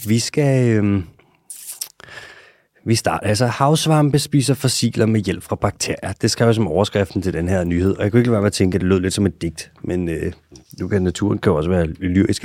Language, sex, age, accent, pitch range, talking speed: Danish, male, 30-49, native, 95-130 Hz, 230 wpm